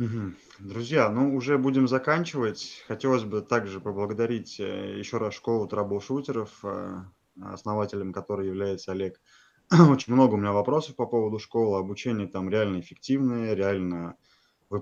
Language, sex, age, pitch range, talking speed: Russian, male, 20-39, 95-120 Hz, 130 wpm